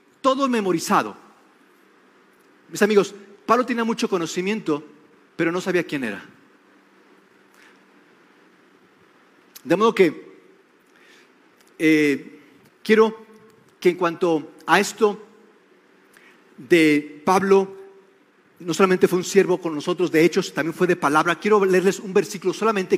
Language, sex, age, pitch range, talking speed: Spanish, male, 40-59, 170-215 Hz, 110 wpm